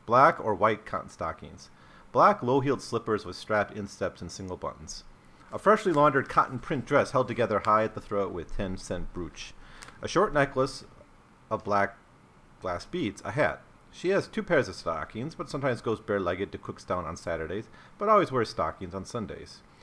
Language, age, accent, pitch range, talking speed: English, 40-59, American, 90-120 Hz, 175 wpm